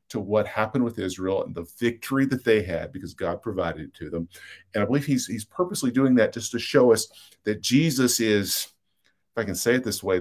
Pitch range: 95-125 Hz